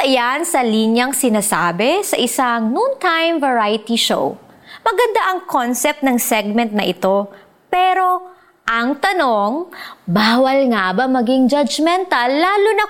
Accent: native